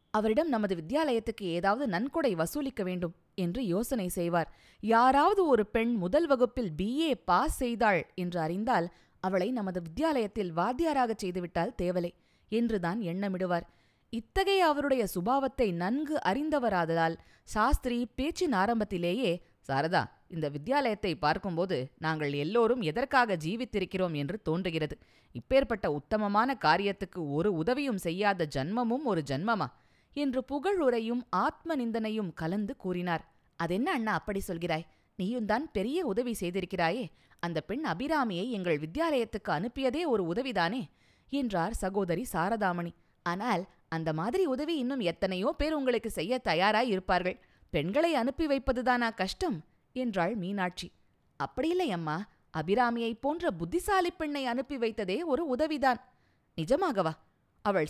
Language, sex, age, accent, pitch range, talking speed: Tamil, female, 20-39, native, 180-260 Hz, 110 wpm